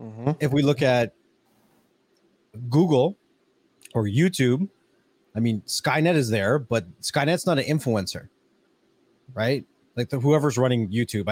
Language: English